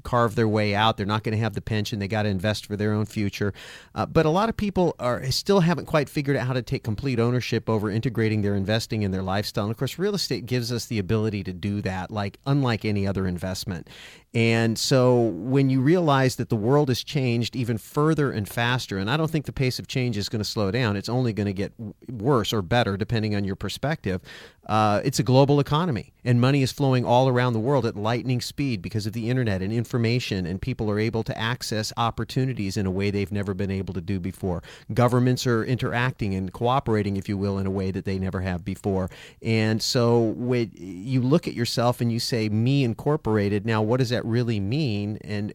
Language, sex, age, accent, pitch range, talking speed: English, male, 40-59, American, 105-130 Hz, 225 wpm